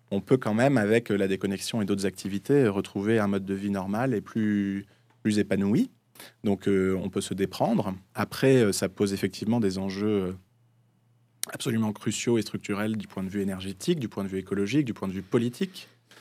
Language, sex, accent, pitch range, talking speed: French, male, French, 100-120 Hz, 190 wpm